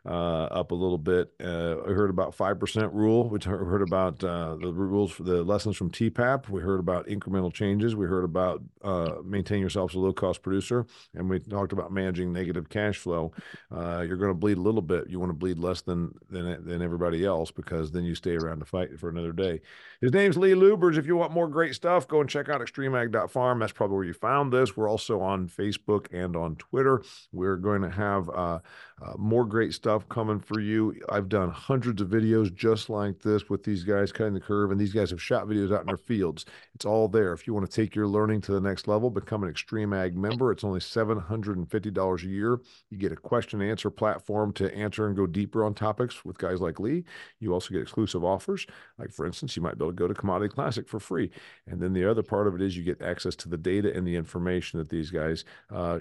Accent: American